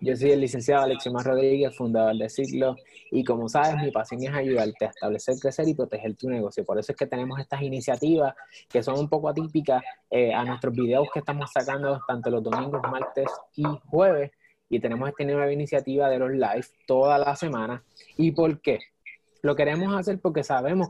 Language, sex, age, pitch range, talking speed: Spanish, male, 20-39, 135-165 Hz, 195 wpm